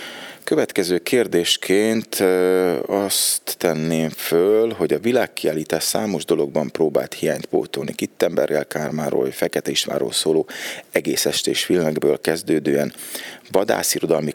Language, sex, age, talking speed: Hungarian, male, 30-49, 105 wpm